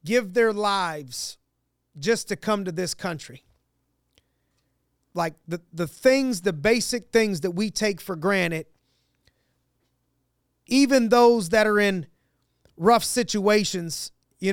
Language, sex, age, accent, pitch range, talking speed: English, male, 30-49, American, 170-215 Hz, 120 wpm